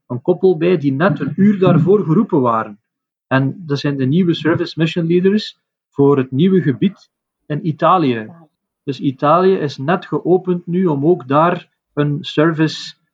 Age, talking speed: 40-59, 160 wpm